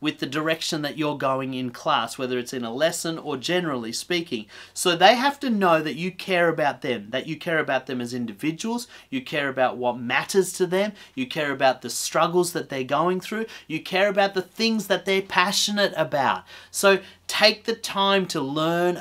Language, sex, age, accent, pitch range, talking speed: English, male, 30-49, Australian, 130-175 Hz, 200 wpm